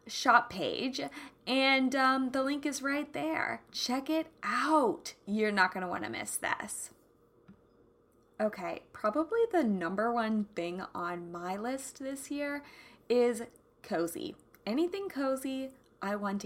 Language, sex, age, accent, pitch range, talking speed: English, female, 20-39, American, 200-305 Hz, 130 wpm